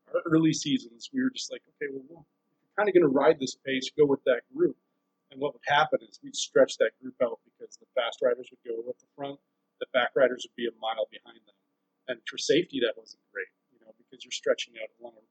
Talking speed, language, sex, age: 245 wpm, English, male, 30-49